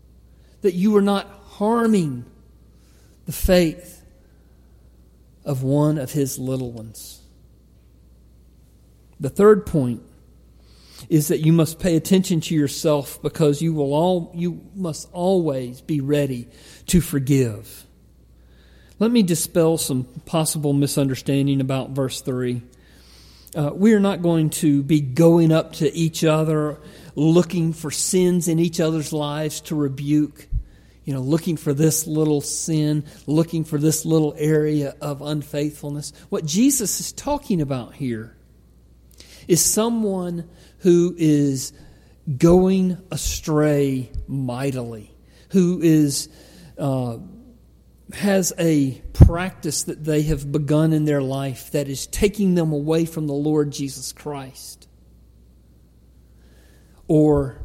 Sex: male